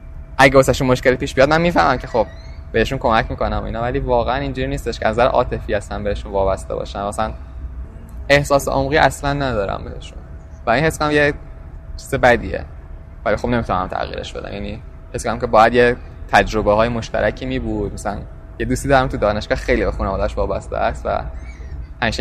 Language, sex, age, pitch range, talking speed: Persian, male, 10-29, 80-125 Hz, 175 wpm